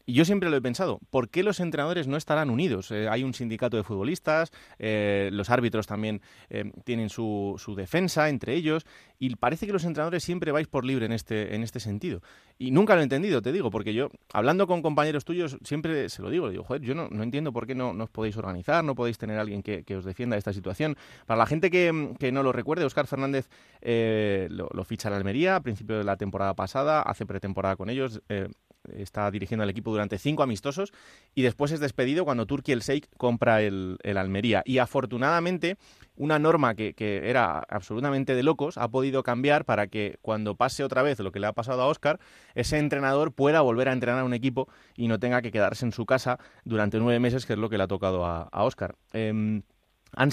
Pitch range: 105-145 Hz